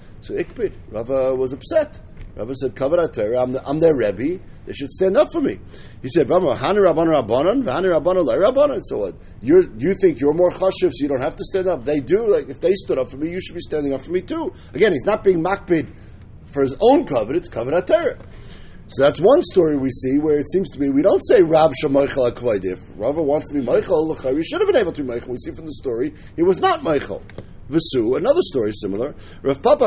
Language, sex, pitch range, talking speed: English, male, 130-190 Hz, 230 wpm